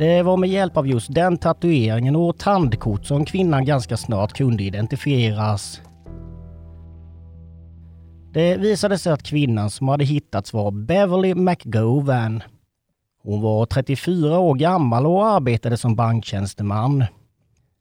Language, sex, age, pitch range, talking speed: English, male, 30-49, 110-160 Hz, 120 wpm